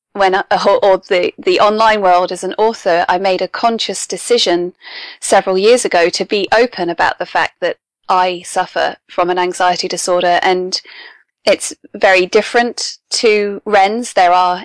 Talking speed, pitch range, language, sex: 155 wpm, 185-235 Hz, English, female